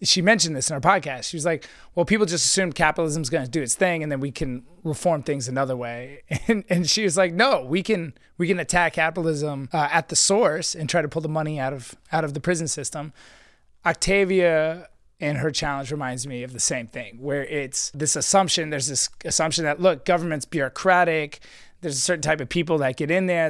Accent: American